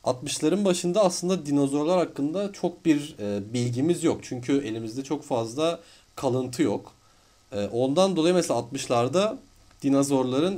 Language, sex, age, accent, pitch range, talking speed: Turkish, male, 40-59, native, 105-145 Hz, 115 wpm